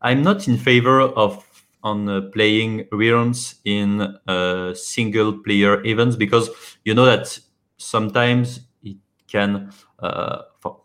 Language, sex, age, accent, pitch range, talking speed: English, male, 30-49, French, 100-120 Hz, 115 wpm